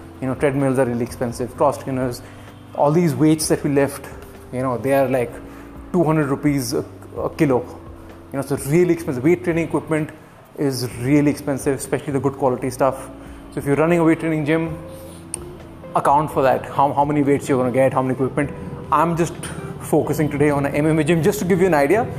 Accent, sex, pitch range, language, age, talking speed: Indian, male, 130-155 Hz, English, 20-39, 205 wpm